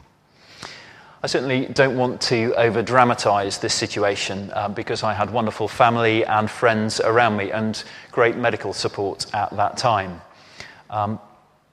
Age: 30-49